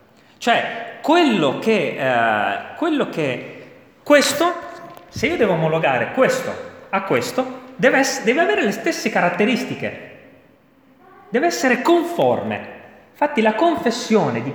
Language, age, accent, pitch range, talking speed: Italian, 30-49, native, 205-295 Hz, 110 wpm